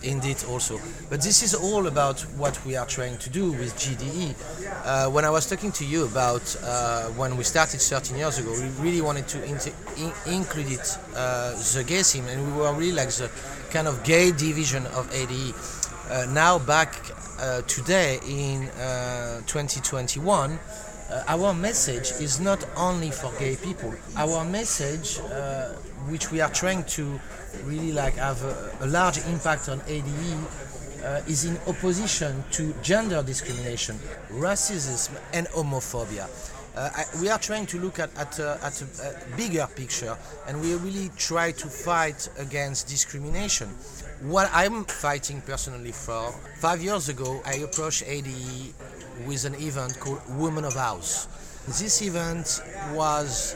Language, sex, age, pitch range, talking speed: Dutch, male, 30-49, 130-165 Hz, 155 wpm